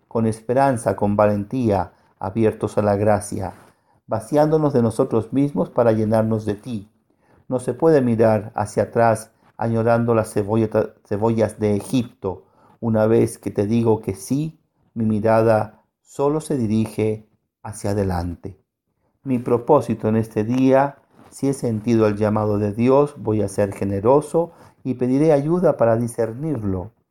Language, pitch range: Spanish, 105-130 Hz